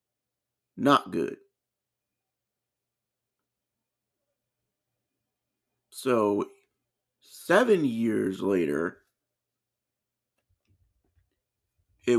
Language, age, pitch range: English, 50-69, 100-130 Hz